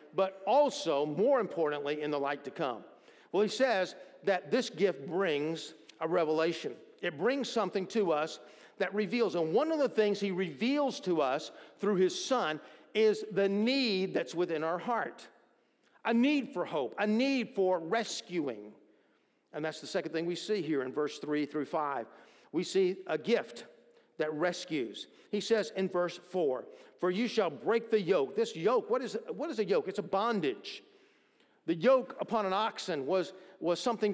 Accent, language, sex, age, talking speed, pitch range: American, English, male, 50-69, 180 wpm, 175-240 Hz